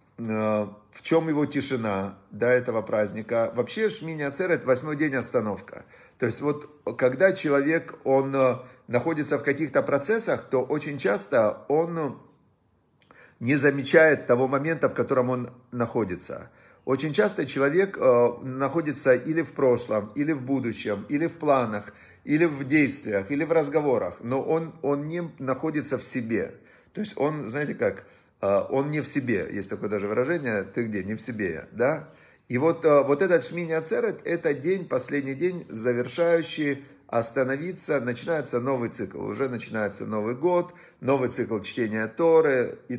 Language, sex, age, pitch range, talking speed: Russian, male, 40-59, 120-155 Hz, 145 wpm